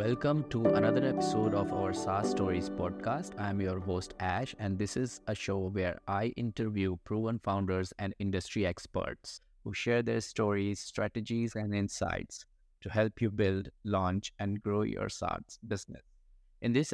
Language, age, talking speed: English, 20-39, 165 wpm